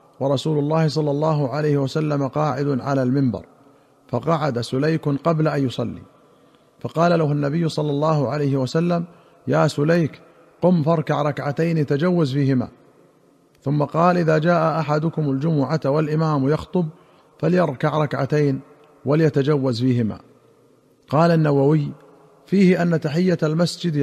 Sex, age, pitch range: male, 50-69, 140-165 Hz